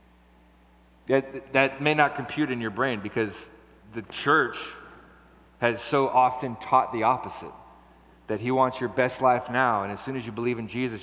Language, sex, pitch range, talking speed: English, male, 105-135 Hz, 175 wpm